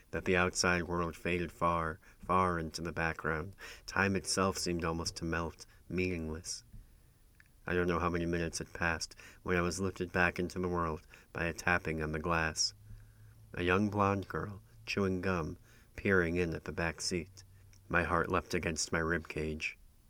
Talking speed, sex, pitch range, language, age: 170 wpm, male, 85-95 Hz, English, 40-59